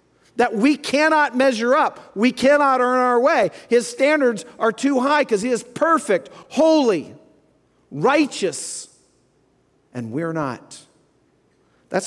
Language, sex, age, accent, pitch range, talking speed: English, male, 50-69, American, 125-180 Hz, 125 wpm